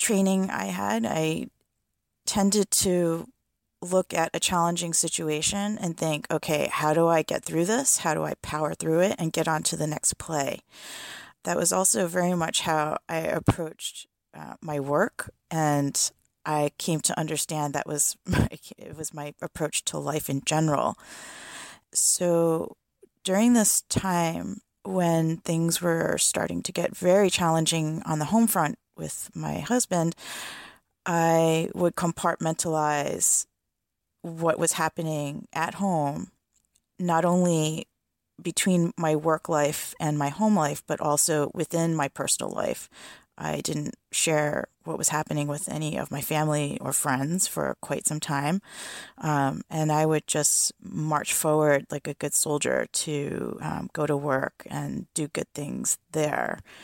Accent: American